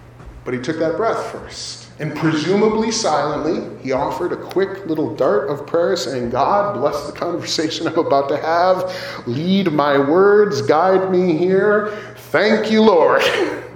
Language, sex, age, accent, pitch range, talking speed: English, male, 30-49, American, 145-200 Hz, 155 wpm